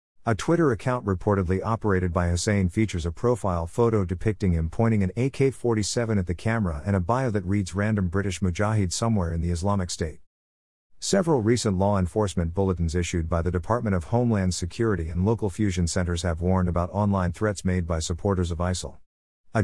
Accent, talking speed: American, 180 wpm